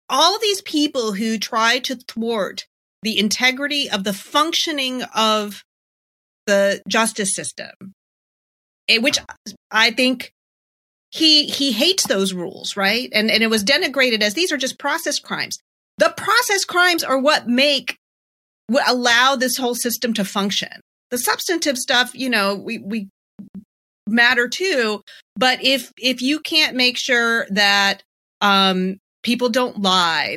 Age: 30-49